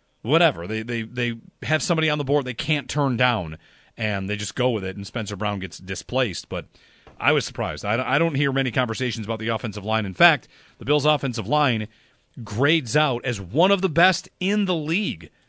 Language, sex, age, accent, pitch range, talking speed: English, male, 40-59, American, 100-150 Hz, 205 wpm